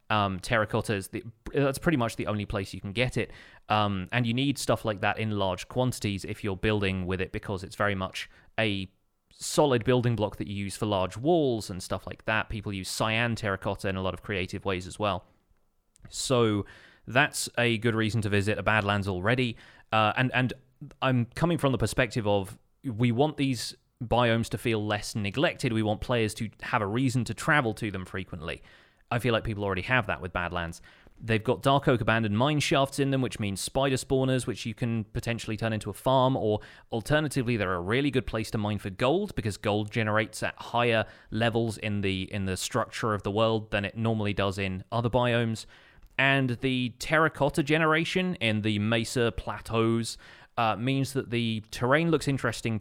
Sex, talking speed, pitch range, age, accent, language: male, 195 wpm, 100-125 Hz, 30-49, British, English